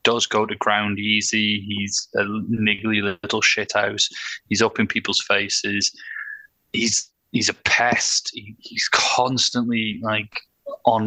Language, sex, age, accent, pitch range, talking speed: English, male, 20-39, British, 110-135 Hz, 135 wpm